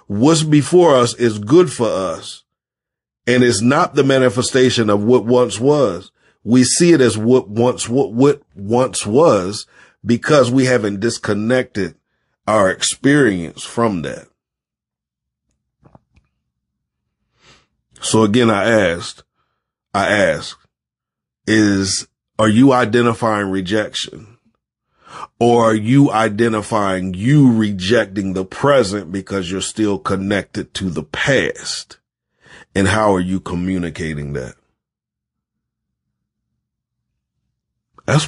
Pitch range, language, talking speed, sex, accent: 95-120 Hz, English, 105 wpm, male, American